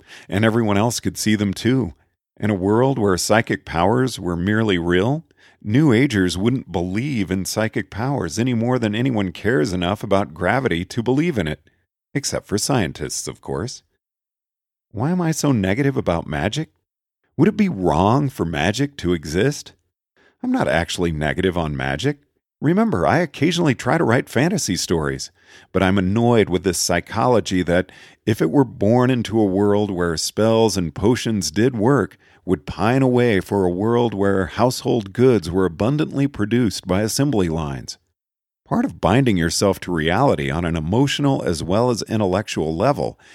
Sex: male